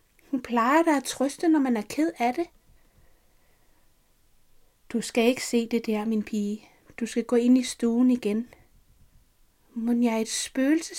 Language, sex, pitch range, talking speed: Danish, female, 225-260 Hz, 170 wpm